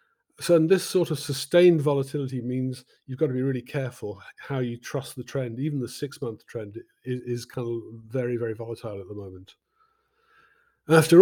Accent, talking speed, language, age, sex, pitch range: British, 170 wpm, English, 40-59, male, 115-145 Hz